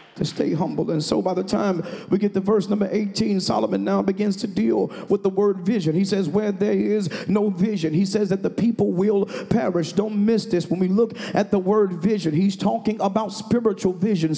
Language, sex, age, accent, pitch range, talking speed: English, male, 40-59, American, 195-230 Hz, 215 wpm